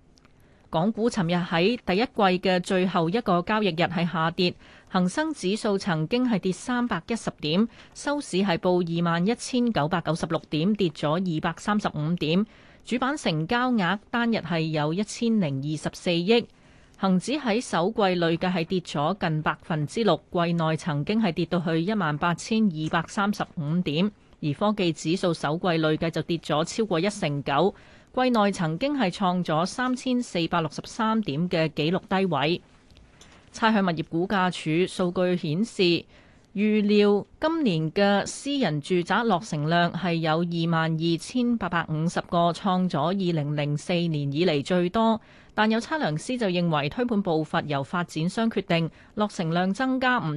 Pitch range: 160-210 Hz